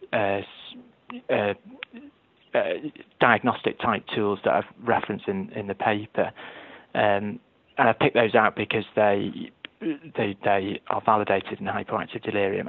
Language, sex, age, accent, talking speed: English, male, 20-39, British, 130 wpm